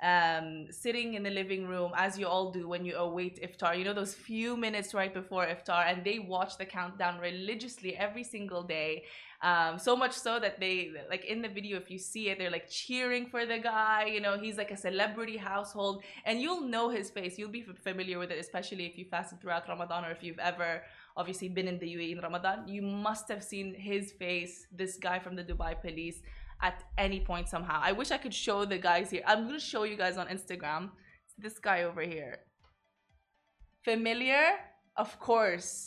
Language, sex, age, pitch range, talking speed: Arabic, female, 20-39, 180-215 Hz, 205 wpm